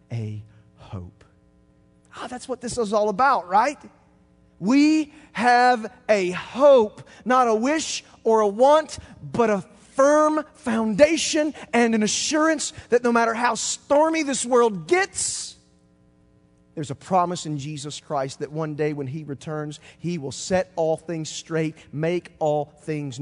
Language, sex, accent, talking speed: English, male, American, 145 wpm